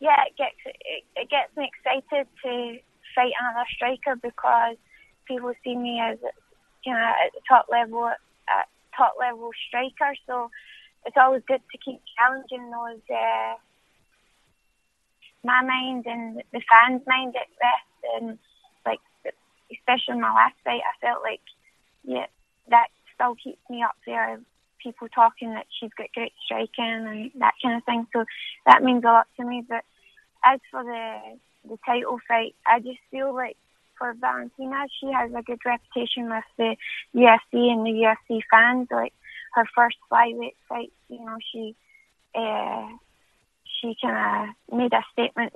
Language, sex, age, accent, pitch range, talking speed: English, female, 20-39, British, 230-255 Hz, 155 wpm